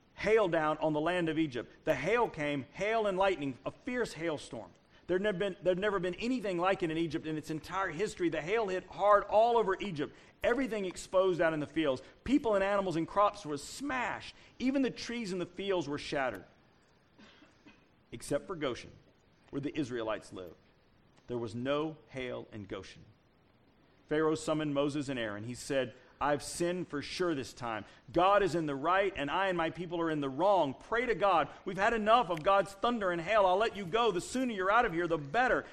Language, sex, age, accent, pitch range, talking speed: English, male, 40-59, American, 150-205 Hz, 200 wpm